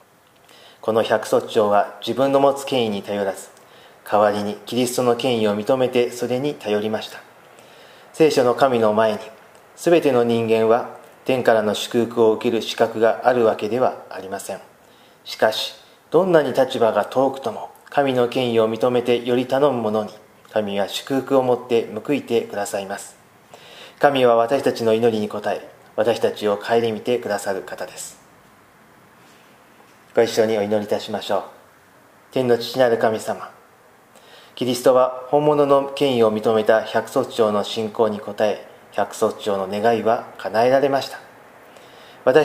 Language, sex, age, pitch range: Japanese, male, 40-59, 105-125 Hz